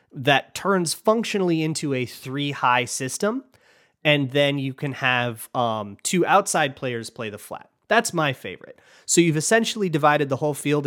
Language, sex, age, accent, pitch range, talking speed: English, male, 30-49, American, 120-160 Hz, 160 wpm